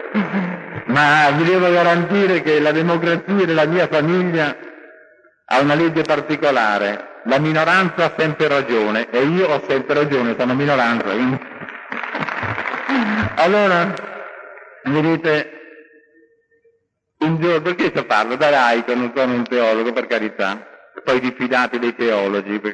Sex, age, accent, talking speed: male, 50-69, native, 125 wpm